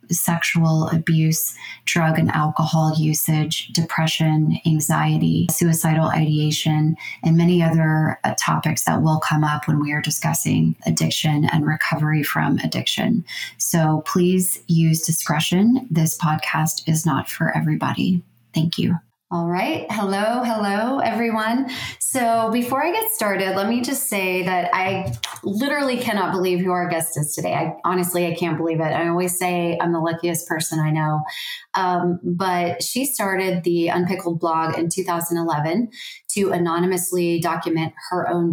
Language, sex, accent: English, female, American